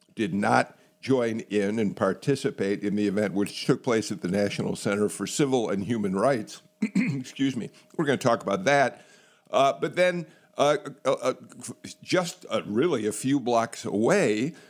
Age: 50-69